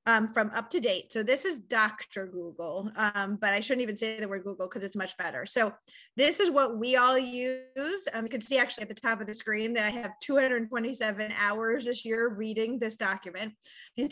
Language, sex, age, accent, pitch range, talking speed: English, female, 30-49, American, 210-255 Hz, 215 wpm